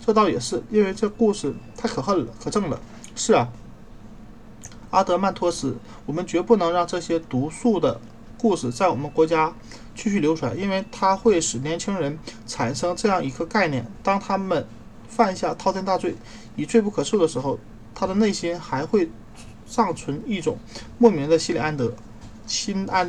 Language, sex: Chinese, male